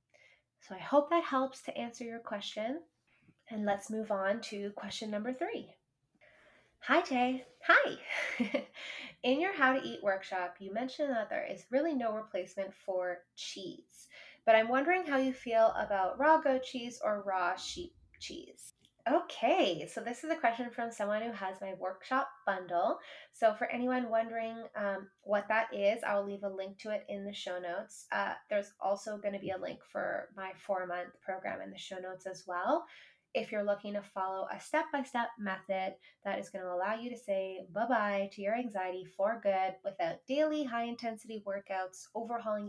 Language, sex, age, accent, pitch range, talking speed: English, female, 20-39, American, 195-250 Hz, 180 wpm